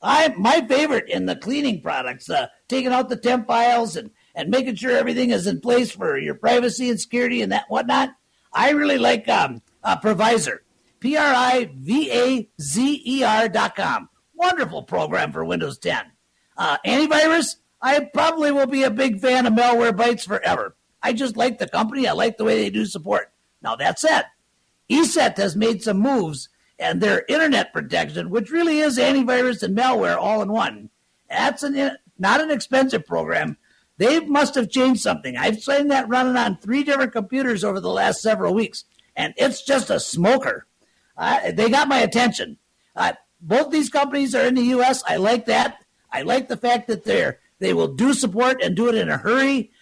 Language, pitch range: English, 230-270 Hz